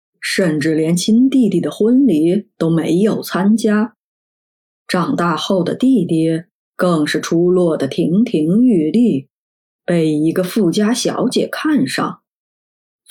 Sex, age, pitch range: female, 20-39, 165-235 Hz